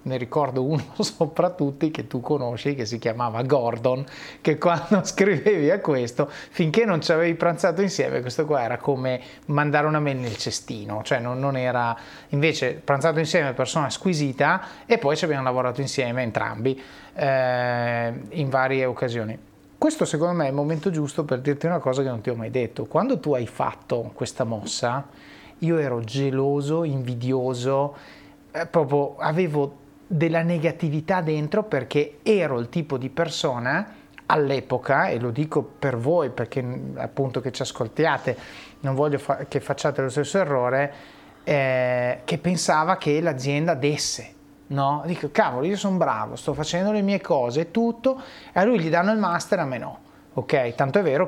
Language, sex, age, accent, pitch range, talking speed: Italian, male, 30-49, native, 130-165 Hz, 165 wpm